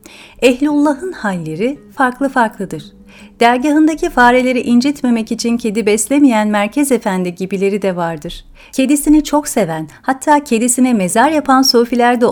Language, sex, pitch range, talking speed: Turkish, female, 195-260 Hz, 115 wpm